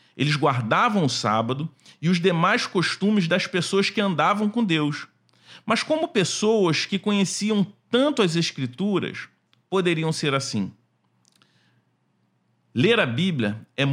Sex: male